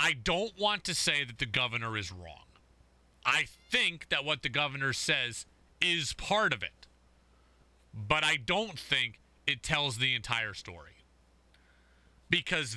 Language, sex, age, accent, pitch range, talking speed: English, male, 30-49, American, 125-180 Hz, 145 wpm